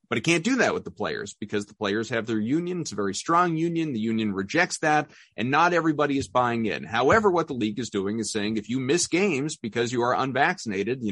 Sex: male